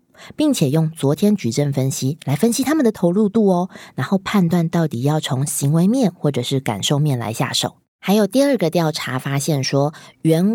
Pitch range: 140-200 Hz